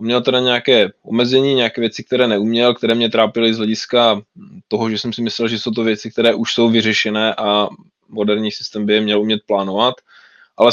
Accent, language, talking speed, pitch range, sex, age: native, Czech, 195 wpm, 105-130 Hz, male, 20-39